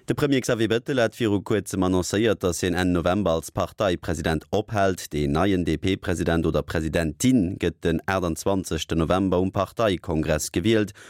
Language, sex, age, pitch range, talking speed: English, male, 30-49, 85-105 Hz, 140 wpm